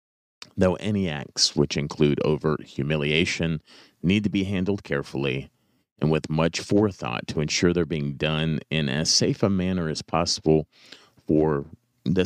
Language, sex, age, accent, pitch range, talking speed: English, male, 30-49, American, 70-90 Hz, 145 wpm